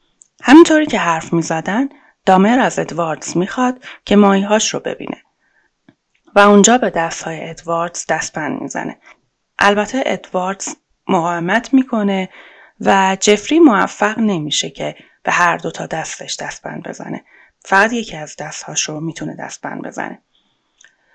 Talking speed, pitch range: 130 wpm, 180-225 Hz